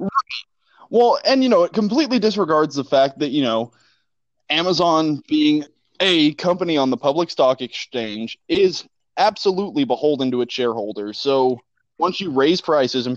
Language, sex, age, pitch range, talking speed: English, male, 20-39, 120-180 Hz, 150 wpm